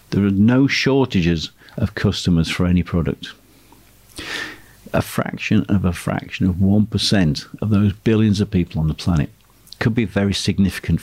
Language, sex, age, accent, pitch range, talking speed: English, male, 50-69, British, 90-110 Hz, 150 wpm